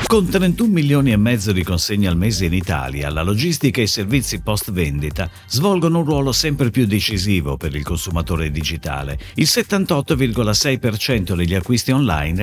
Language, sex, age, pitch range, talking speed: Italian, male, 50-69, 90-145 Hz, 160 wpm